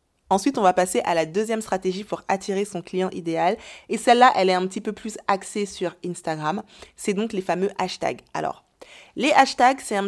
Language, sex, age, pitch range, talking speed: French, female, 20-39, 175-220 Hz, 200 wpm